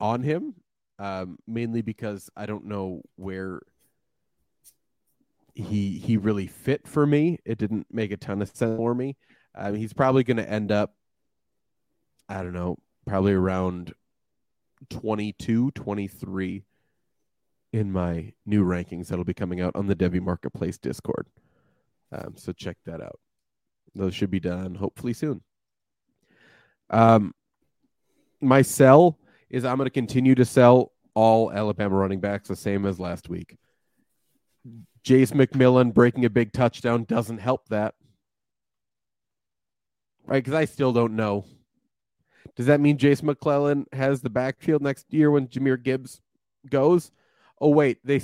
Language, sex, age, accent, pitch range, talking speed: English, male, 20-39, American, 100-135 Hz, 140 wpm